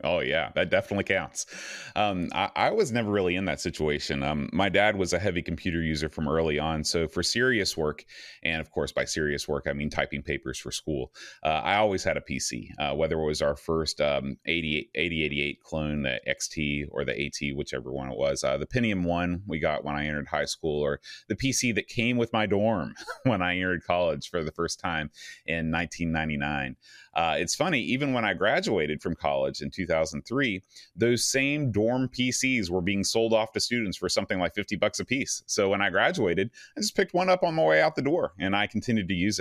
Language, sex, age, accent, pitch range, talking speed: English, male, 30-49, American, 75-105 Hz, 220 wpm